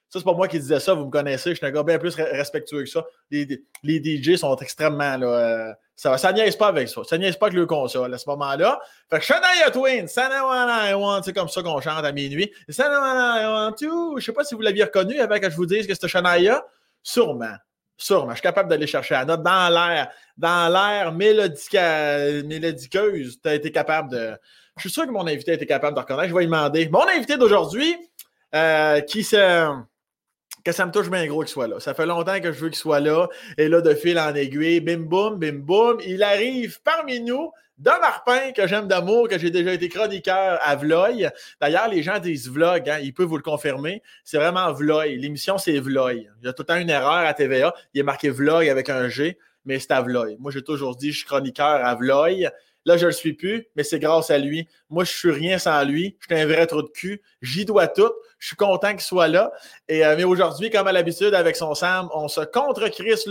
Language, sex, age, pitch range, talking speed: French, male, 20-39, 150-205 Hz, 245 wpm